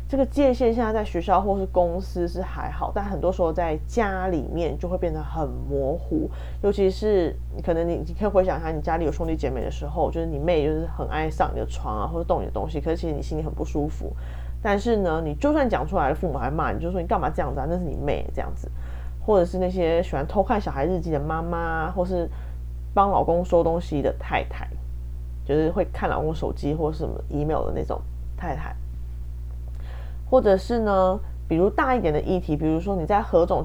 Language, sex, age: Chinese, female, 20-39